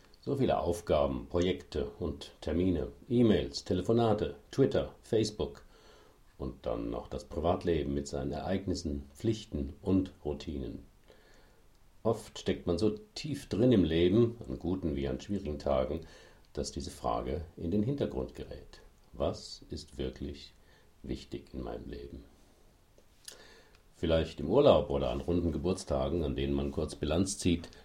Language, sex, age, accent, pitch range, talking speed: German, male, 50-69, German, 70-95 Hz, 135 wpm